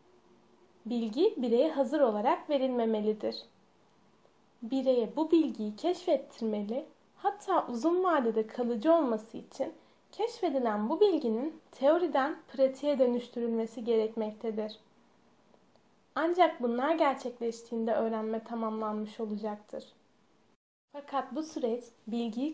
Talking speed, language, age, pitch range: 85 wpm, Turkish, 10-29, 220-290 Hz